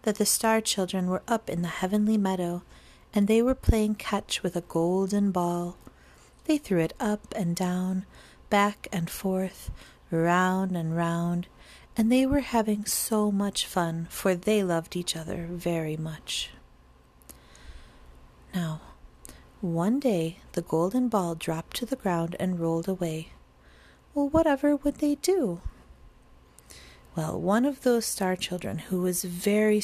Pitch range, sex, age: 165-220 Hz, female, 40-59